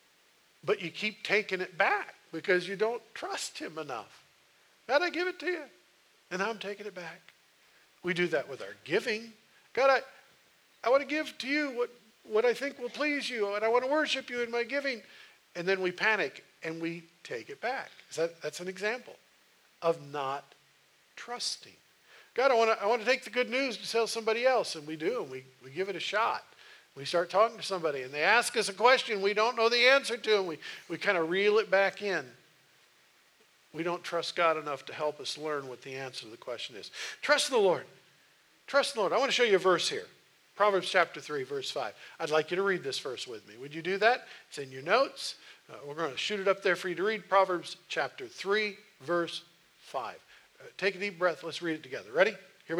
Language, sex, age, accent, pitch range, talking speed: English, male, 50-69, American, 170-250 Hz, 230 wpm